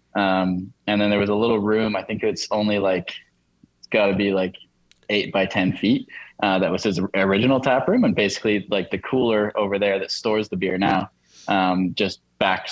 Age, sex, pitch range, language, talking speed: 10-29, male, 95-110 Hz, English, 205 wpm